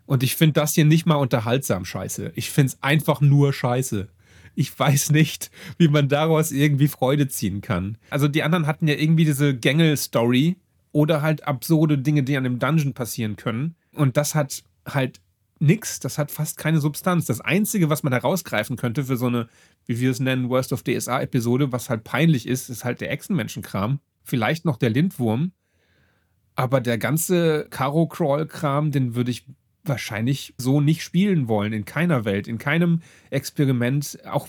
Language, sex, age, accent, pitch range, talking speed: German, male, 30-49, German, 125-155 Hz, 175 wpm